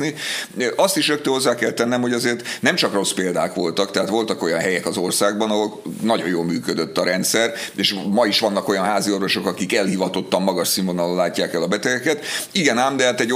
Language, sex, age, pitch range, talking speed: Hungarian, male, 50-69, 95-125 Hz, 200 wpm